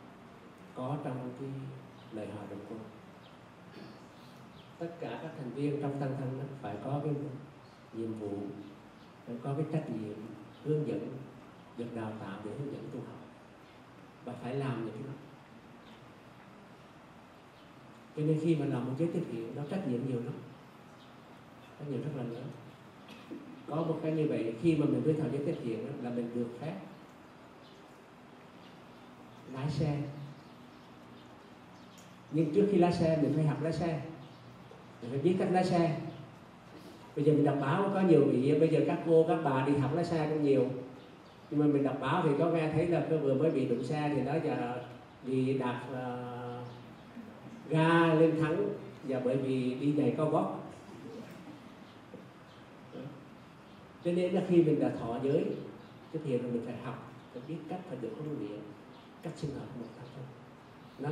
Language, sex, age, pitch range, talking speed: Vietnamese, male, 50-69, 120-155 Hz, 175 wpm